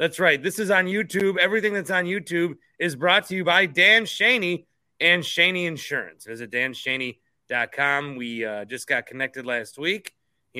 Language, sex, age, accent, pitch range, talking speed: English, male, 30-49, American, 120-155 Hz, 170 wpm